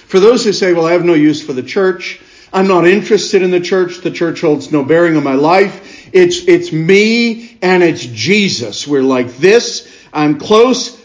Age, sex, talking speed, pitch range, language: 50-69, male, 200 wpm, 150-210 Hz, English